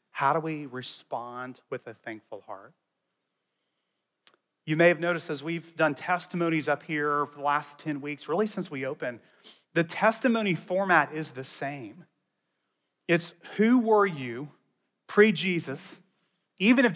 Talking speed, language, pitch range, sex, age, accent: 140 wpm, English, 155-205 Hz, male, 30-49, American